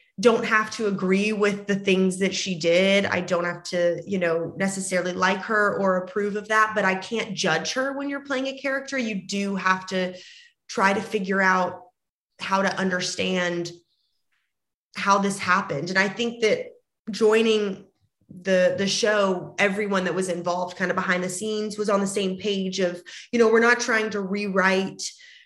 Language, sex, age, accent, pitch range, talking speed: English, female, 20-39, American, 185-210 Hz, 180 wpm